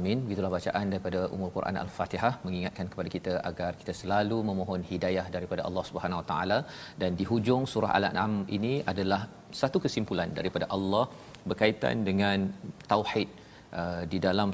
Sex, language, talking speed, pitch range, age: male, Malayalam, 155 wpm, 95-110 Hz, 40-59